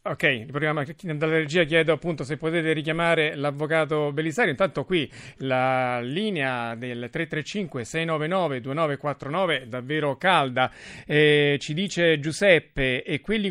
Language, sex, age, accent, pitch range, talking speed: Italian, male, 40-59, native, 140-175 Hz, 120 wpm